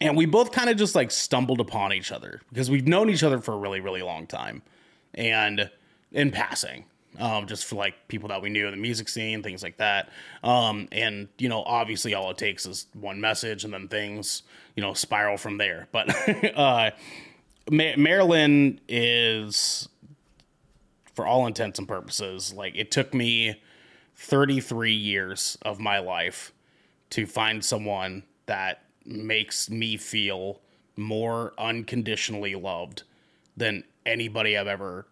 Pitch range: 105-130 Hz